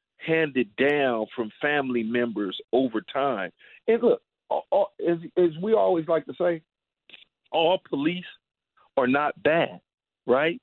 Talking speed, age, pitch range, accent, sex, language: 135 wpm, 50-69, 135-195 Hz, American, male, English